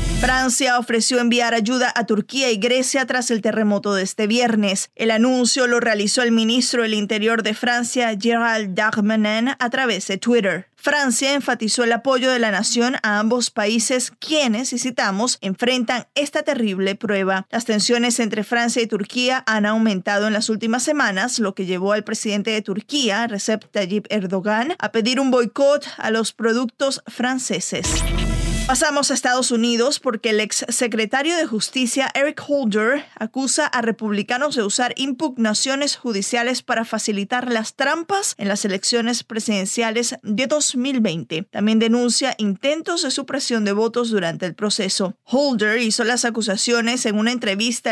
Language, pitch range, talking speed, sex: Spanish, 215-255 Hz, 155 wpm, female